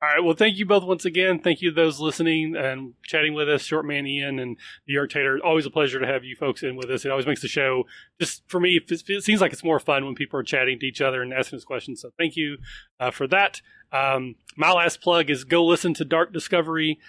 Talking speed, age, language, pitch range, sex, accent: 260 wpm, 30-49, English, 140-170 Hz, male, American